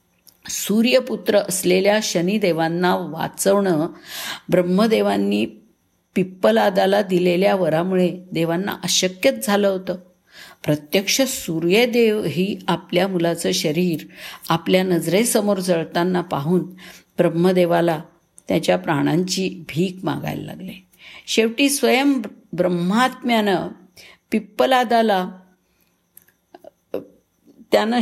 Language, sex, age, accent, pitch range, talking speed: Marathi, female, 50-69, native, 170-215 Hz, 70 wpm